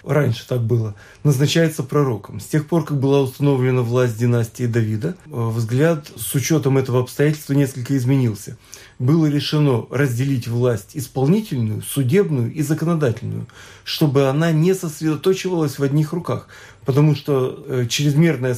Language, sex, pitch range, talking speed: Russian, male, 125-160 Hz, 125 wpm